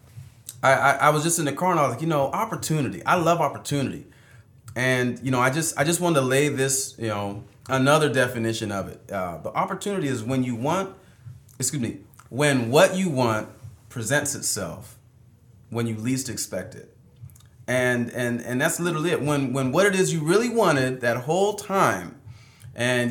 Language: English